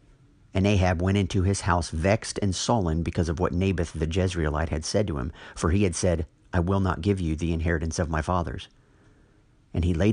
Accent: American